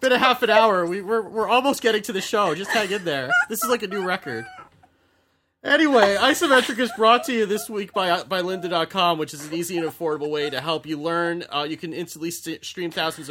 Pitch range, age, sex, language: 120-165 Hz, 30-49, male, English